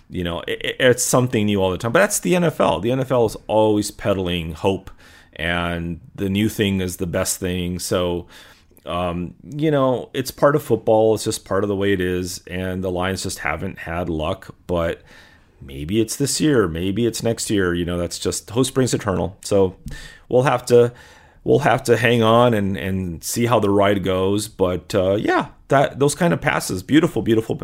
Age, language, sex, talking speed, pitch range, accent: 30-49, English, male, 200 wpm, 90-110 Hz, American